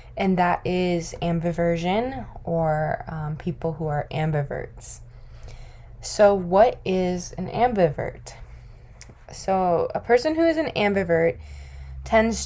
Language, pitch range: English, 155-195 Hz